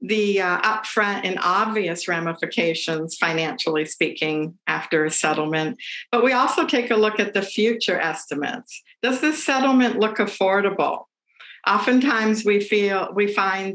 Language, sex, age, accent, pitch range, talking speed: English, female, 60-79, American, 180-235 Hz, 130 wpm